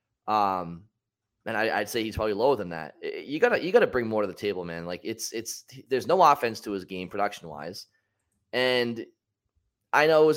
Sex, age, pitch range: male, 20-39, 95-120 Hz